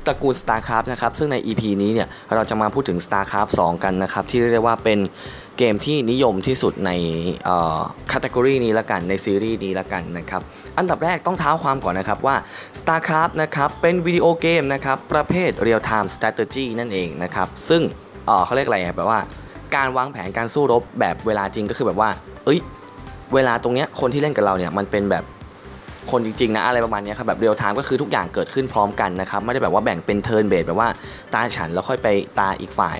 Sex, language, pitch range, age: male, Thai, 95-130 Hz, 10-29